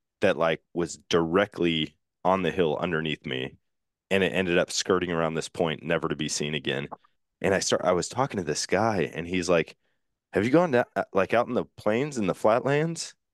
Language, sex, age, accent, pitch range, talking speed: English, male, 20-39, American, 80-95 Hz, 205 wpm